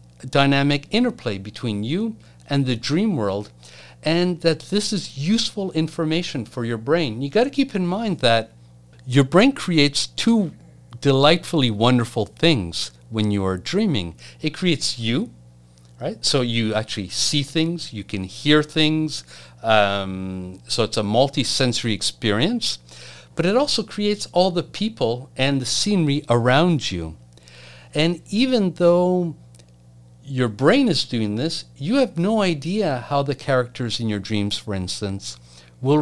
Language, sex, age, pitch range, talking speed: English, male, 50-69, 105-170 Hz, 145 wpm